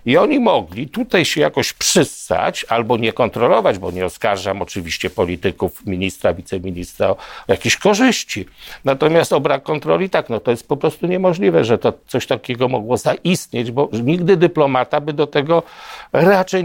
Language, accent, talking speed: Polish, native, 155 wpm